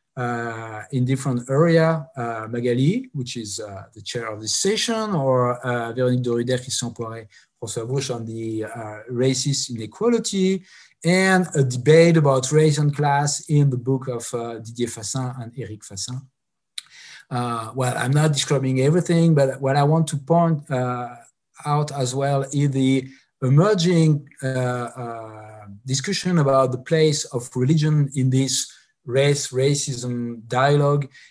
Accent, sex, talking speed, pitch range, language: French, male, 135 wpm, 120-145 Hz, French